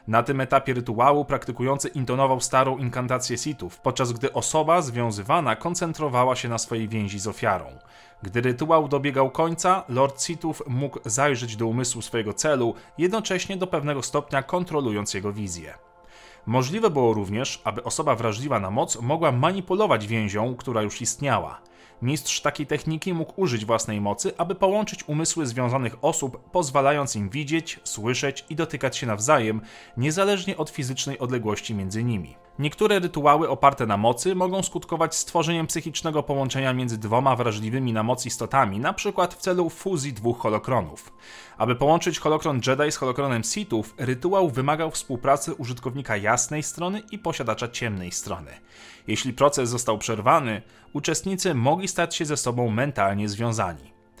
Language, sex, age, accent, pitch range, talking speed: Polish, male, 30-49, native, 115-160 Hz, 145 wpm